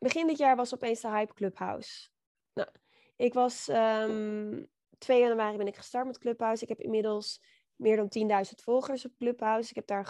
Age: 20-39